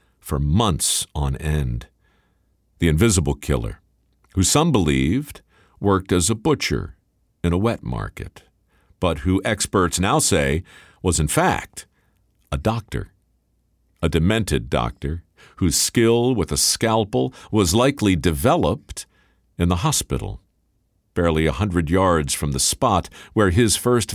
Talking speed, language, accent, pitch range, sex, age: 130 wpm, English, American, 75-105 Hz, male, 50-69